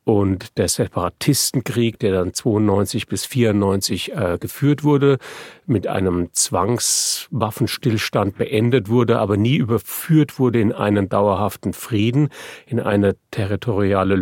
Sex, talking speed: male, 115 wpm